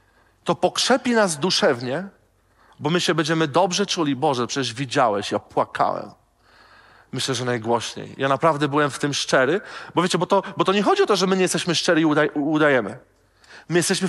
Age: 40-59